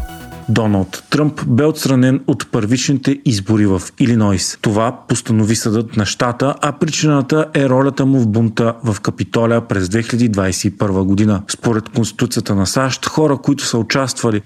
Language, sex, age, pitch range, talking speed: Bulgarian, male, 40-59, 110-140 Hz, 140 wpm